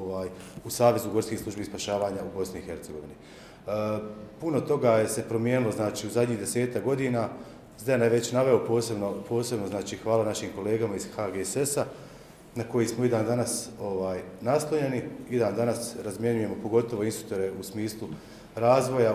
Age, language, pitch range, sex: 40-59, Croatian, 105-120 Hz, male